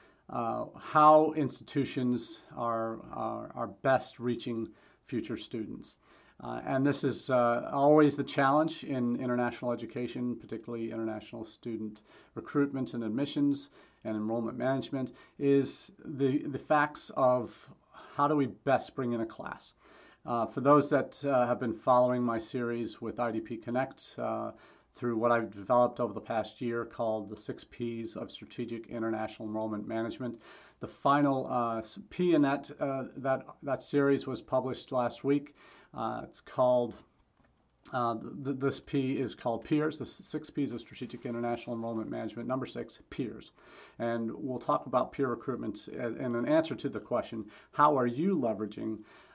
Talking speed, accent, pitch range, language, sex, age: 150 wpm, American, 115-140 Hz, English, male, 40-59